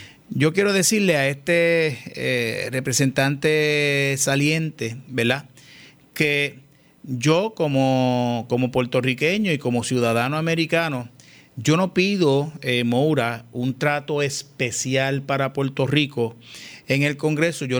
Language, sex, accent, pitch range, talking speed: Spanish, male, Venezuelan, 130-175 Hz, 110 wpm